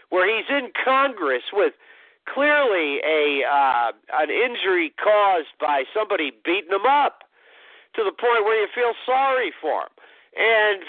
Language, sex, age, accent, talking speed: English, male, 50-69, American, 145 wpm